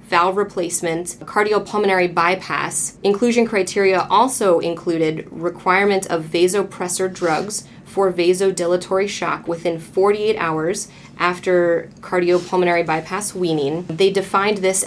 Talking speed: 100 wpm